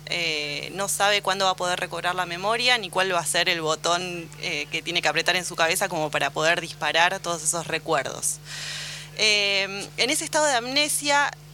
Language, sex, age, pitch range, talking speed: Spanish, female, 20-39, 160-200 Hz, 200 wpm